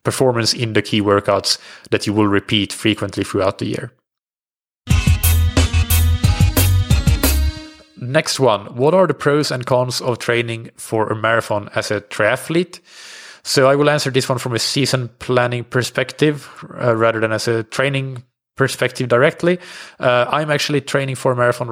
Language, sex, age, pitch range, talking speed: English, male, 30-49, 105-130 Hz, 150 wpm